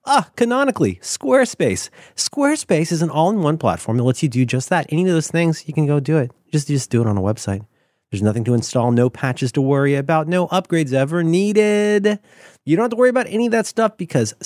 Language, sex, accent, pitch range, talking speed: English, male, American, 125-215 Hz, 225 wpm